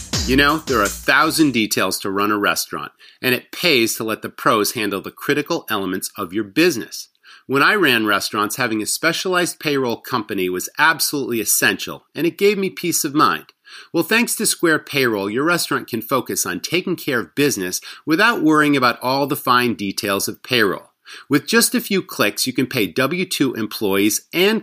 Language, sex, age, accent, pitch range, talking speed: English, male, 40-59, American, 115-180 Hz, 190 wpm